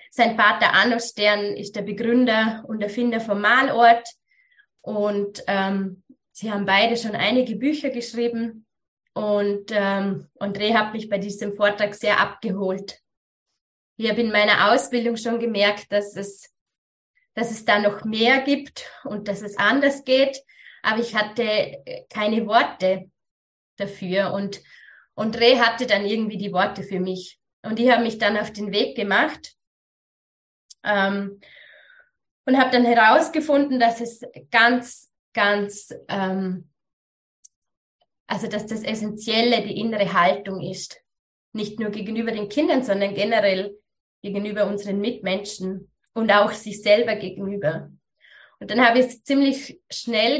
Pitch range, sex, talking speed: 200-235 Hz, female, 135 wpm